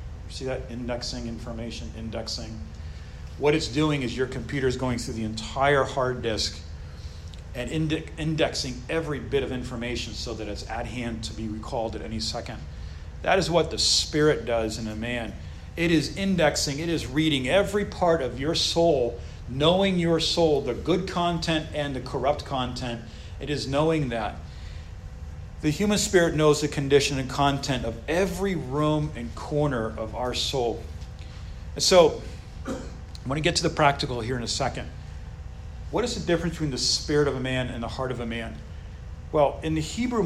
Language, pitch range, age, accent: English, 105-155 Hz, 40-59, American